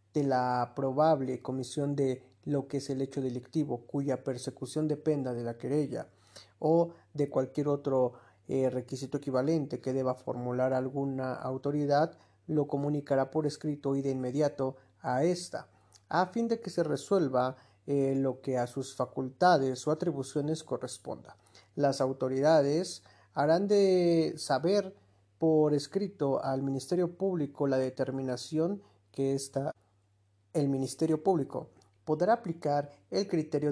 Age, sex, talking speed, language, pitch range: 50-69, male, 130 wpm, Spanish, 130-150 Hz